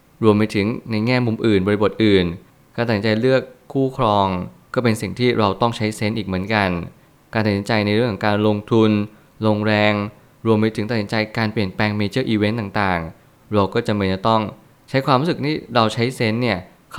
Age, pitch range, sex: 20-39, 105-120 Hz, male